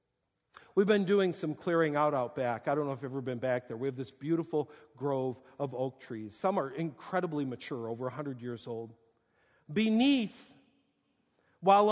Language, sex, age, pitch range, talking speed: English, male, 50-69, 140-205 Hz, 175 wpm